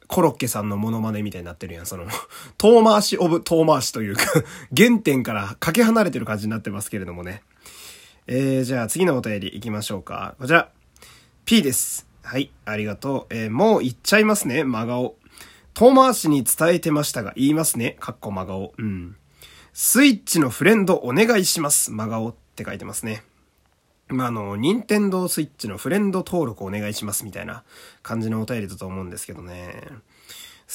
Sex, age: male, 20-39